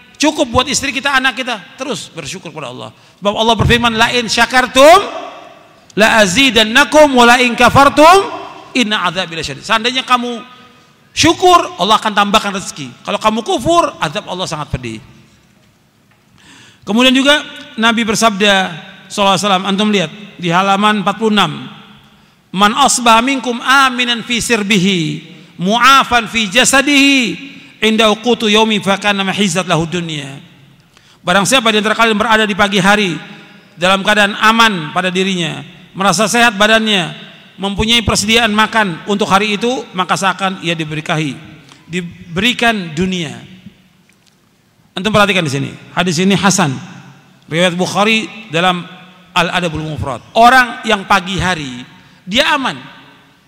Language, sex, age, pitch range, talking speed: Indonesian, male, 50-69, 180-235 Hz, 115 wpm